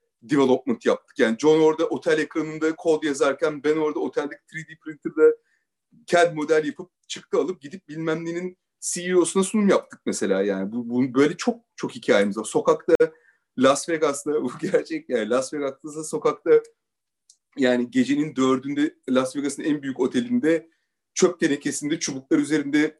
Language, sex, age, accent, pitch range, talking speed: Turkish, male, 40-59, native, 140-220 Hz, 145 wpm